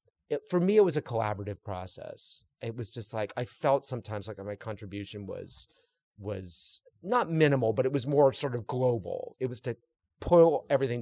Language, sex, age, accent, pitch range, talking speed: English, male, 30-49, American, 110-165 Hz, 185 wpm